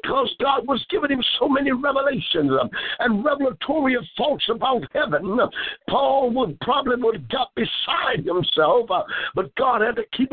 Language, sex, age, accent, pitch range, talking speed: English, male, 60-79, American, 245-290 Hz, 150 wpm